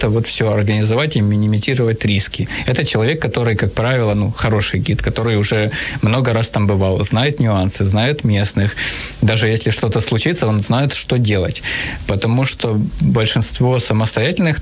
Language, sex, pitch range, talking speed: Ukrainian, male, 105-120 Hz, 150 wpm